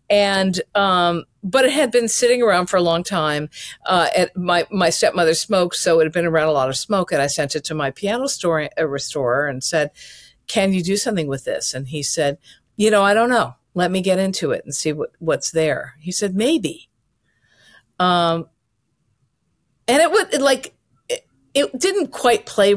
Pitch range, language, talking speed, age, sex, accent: 150-200 Hz, English, 205 wpm, 50-69, female, American